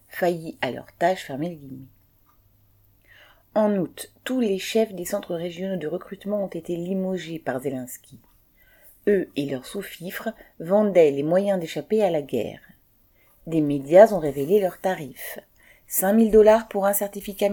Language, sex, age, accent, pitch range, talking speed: French, female, 40-59, French, 145-195 Hz, 160 wpm